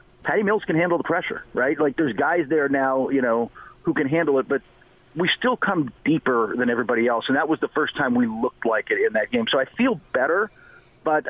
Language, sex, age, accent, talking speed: English, male, 40-59, American, 235 wpm